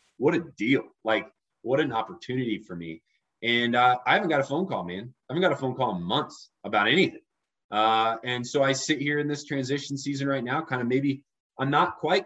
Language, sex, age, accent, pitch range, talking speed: English, male, 20-39, American, 120-160 Hz, 225 wpm